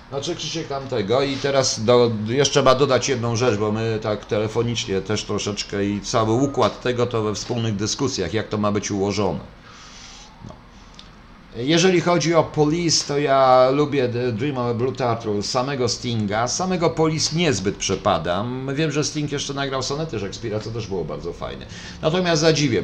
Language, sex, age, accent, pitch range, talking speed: Polish, male, 50-69, native, 100-140 Hz, 170 wpm